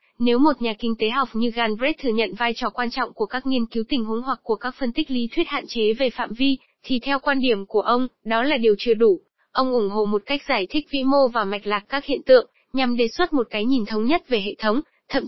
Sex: female